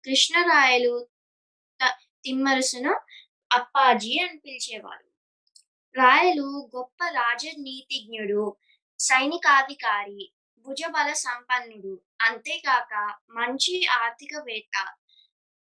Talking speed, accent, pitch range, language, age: 55 wpm, native, 245-315 Hz, Telugu, 20-39